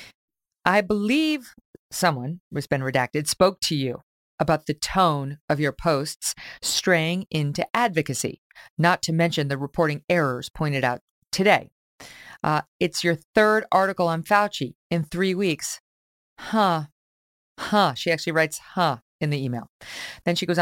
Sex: female